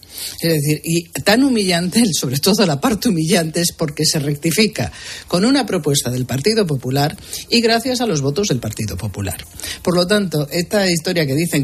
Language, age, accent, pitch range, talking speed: Spanish, 50-69, Spanish, 135-180 Hz, 180 wpm